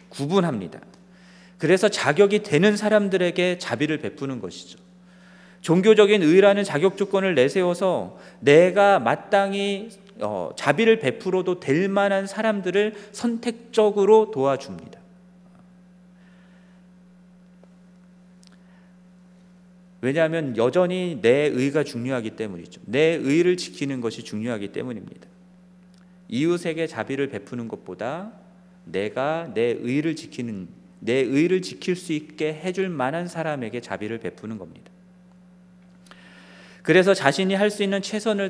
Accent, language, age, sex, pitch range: native, Korean, 40-59, male, 140-185 Hz